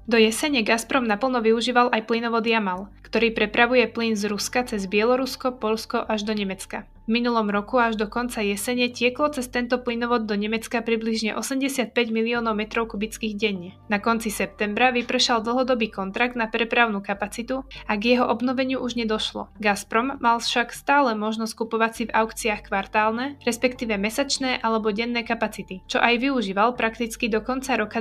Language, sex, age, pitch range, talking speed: Slovak, female, 20-39, 215-245 Hz, 160 wpm